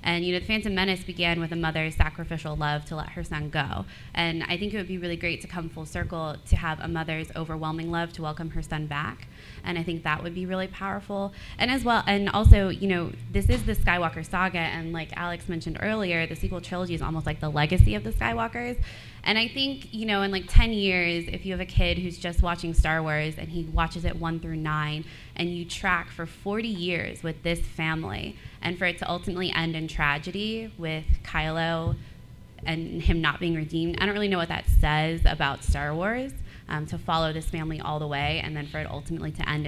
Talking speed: 230 wpm